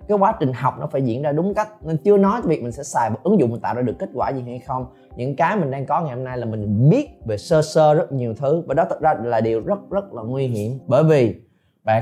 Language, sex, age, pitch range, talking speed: Vietnamese, male, 20-39, 120-160 Hz, 300 wpm